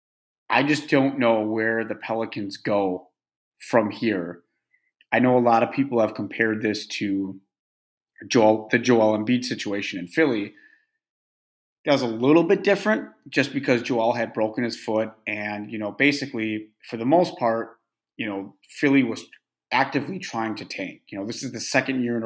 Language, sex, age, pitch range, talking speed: English, male, 30-49, 105-135 Hz, 175 wpm